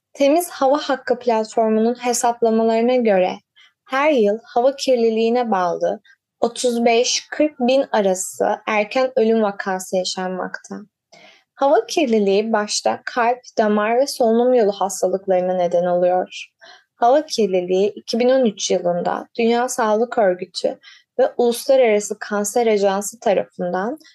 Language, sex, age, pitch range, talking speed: Turkish, female, 20-39, 195-255 Hz, 100 wpm